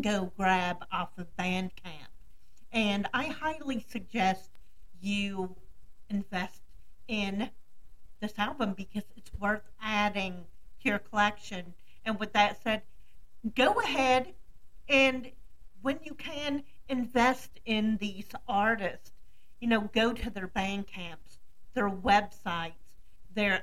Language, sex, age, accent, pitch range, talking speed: English, female, 50-69, American, 195-240 Hz, 110 wpm